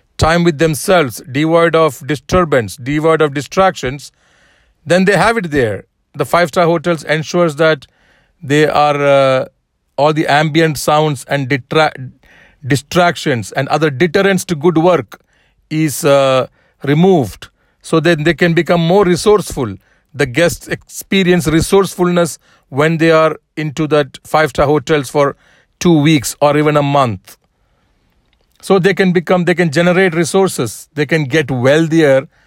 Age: 50-69